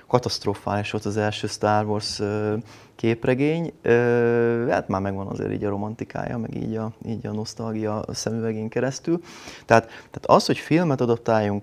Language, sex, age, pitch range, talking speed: Hungarian, male, 30-49, 100-115 Hz, 160 wpm